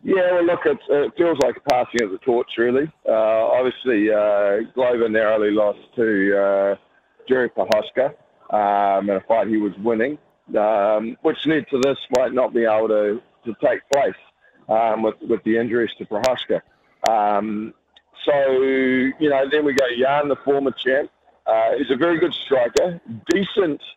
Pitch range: 110-135 Hz